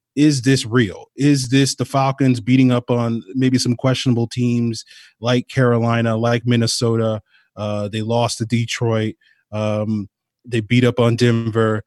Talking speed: 145 wpm